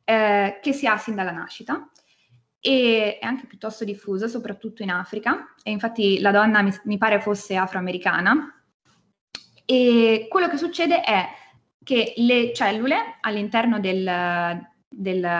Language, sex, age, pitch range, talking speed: Italian, female, 20-39, 195-265 Hz, 130 wpm